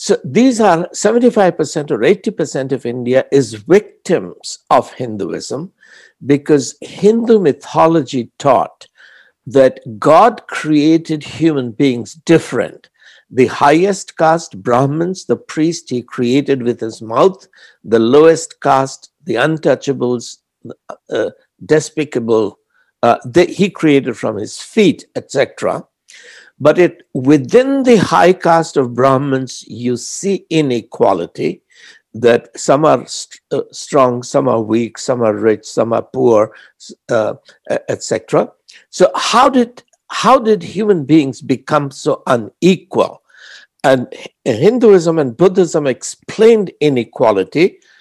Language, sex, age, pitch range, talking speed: English, male, 60-79, 130-190 Hz, 115 wpm